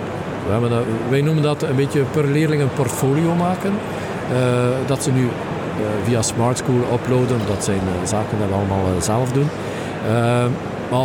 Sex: male